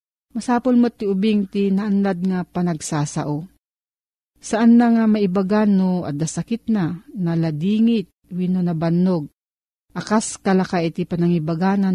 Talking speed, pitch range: 110 wpm, 160-210 Hz